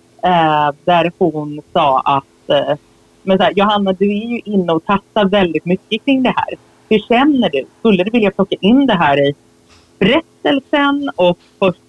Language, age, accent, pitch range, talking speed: English, 30-49, Swedish, 145-195 Hz, 165 wpm